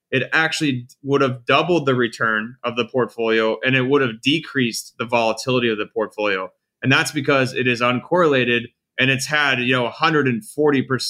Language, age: English, 20-39